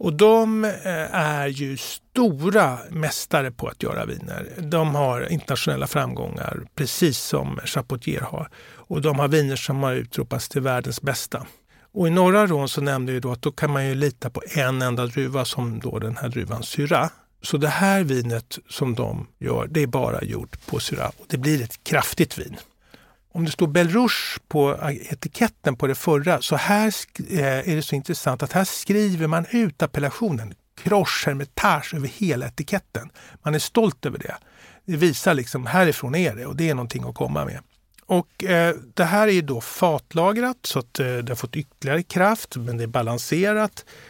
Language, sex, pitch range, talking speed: Swedish, male, 130-175 Hz, 185 wpm